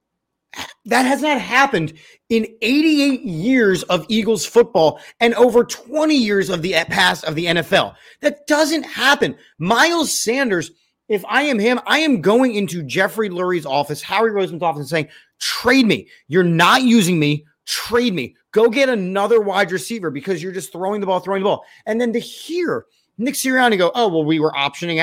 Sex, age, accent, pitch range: male, 30-49, American, 165-250 Hz